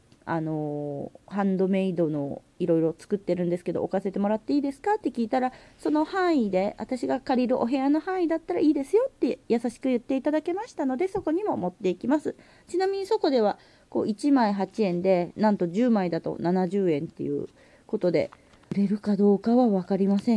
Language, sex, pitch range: Japanese, female, 185-280 Hz